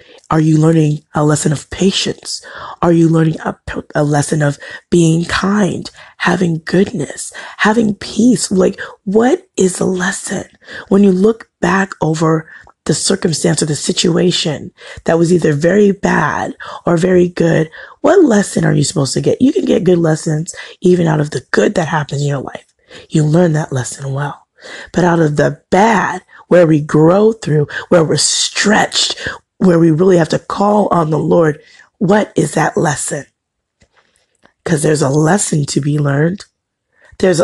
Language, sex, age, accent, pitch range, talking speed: English, female, 30-49, American, 155-190 Hz, 165 wpm